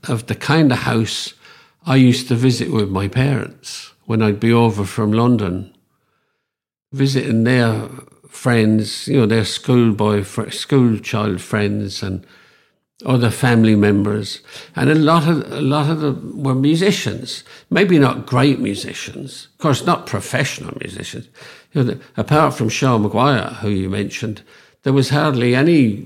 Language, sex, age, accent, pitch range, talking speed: English, male, 50-69, British, 105-135 Hz, 145 wpm